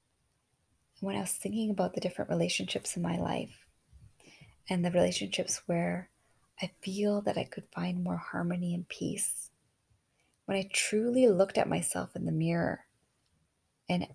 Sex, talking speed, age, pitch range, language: female, 150 wpm, 30-49, 175-215 Hz, English